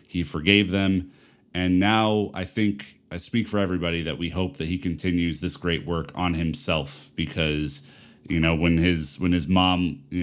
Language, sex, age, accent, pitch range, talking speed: English, male, 30-49, American, 80-90 Hz, 180 wpm